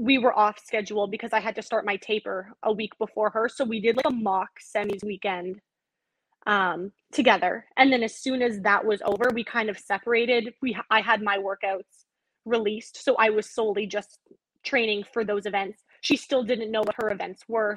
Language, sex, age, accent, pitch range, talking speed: English, female, 20-39, American, 205-240 Hz, 205 wpm